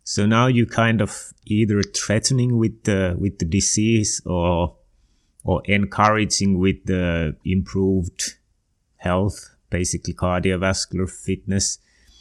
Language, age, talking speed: English, 30-49, 110 wpm